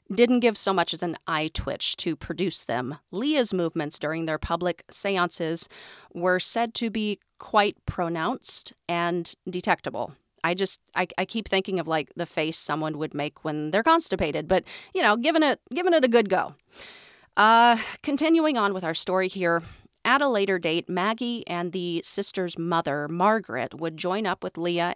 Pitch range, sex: 165-250 Hz, female